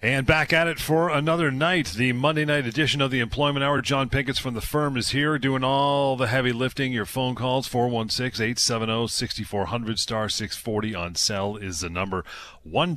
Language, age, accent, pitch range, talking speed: English, 30-49, American, 95-130 Hz, 180 wpm